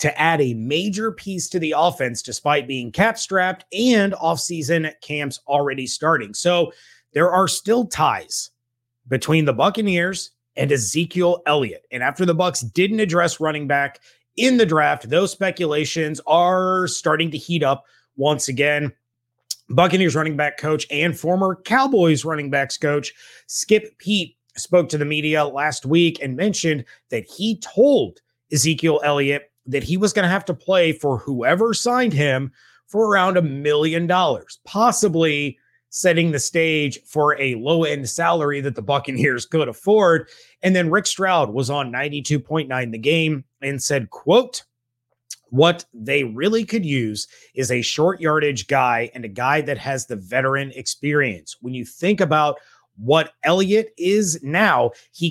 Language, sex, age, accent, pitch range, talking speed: English, male, 30-49, American, 135-180 Hz, 155 wpm